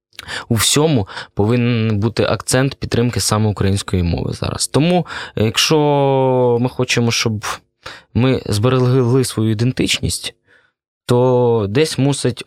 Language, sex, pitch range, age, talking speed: Russian, male, 100-125 Hz, 20-39, 100 wpm